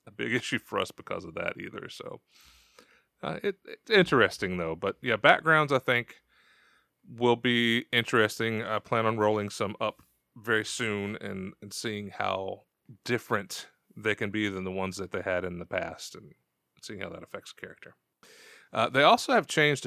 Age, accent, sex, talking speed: 30-49, American, male, 180 wpm